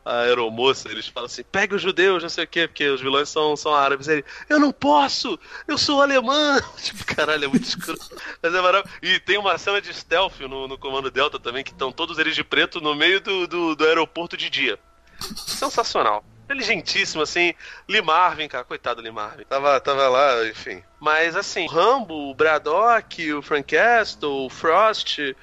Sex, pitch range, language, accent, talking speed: male, 145-215 Hz, Portuguese, Brazilian, 200 wpm